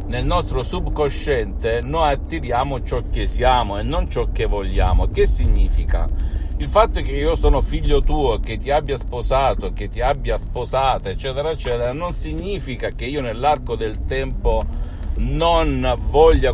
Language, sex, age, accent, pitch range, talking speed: Italian, male, 50-69, native, 80-130 Hz, 150 wpm